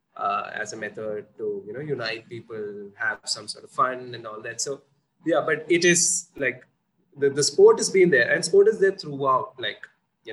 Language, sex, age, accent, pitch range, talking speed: English, male, 20-39, Indian, 130-185 Hz, 210 wpm